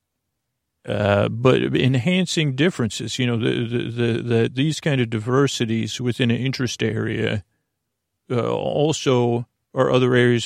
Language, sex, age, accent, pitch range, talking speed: English, male, 40-59, American, 115-135 Hz, 110 wpm